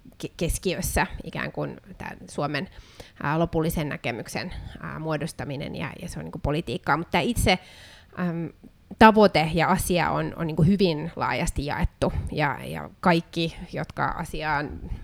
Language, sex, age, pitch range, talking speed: Finnish, female, 20-39, 155-195 Hz, 105 wpm